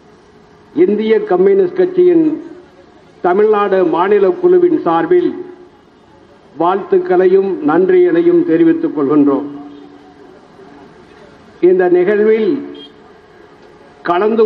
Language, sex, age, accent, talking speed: Tamil, male, 60-79, native, 60 wpm